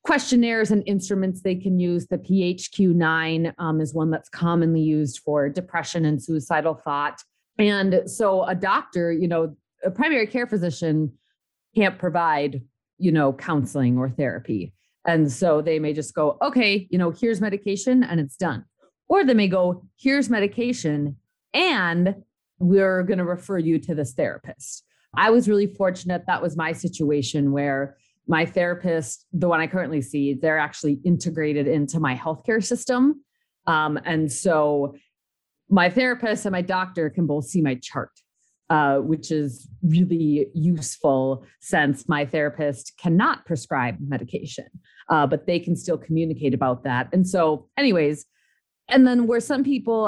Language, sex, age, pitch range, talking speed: English, female, 30-49, 150-195 Hz, 155 wpm